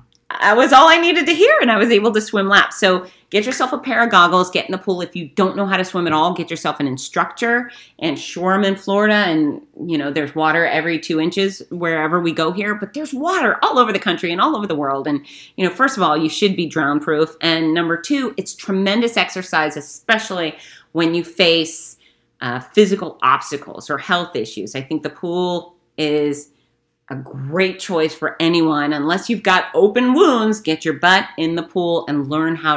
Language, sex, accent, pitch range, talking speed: English, female, American, 150-195 Hz, 215 wpm